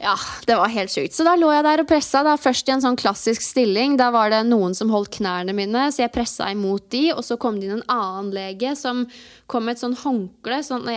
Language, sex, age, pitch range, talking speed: English, female, 20-39, 215-265 Hz, 250 wpm